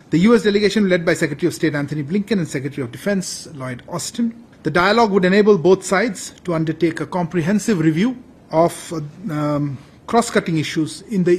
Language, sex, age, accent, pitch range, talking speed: Bengali, male, 40-59, native, 135-195 Hz, 180 wpm